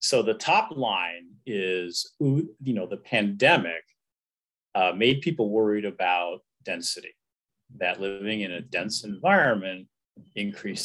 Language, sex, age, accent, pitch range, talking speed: English, male, 40-59, American, 95-135 Hz, 120 wpm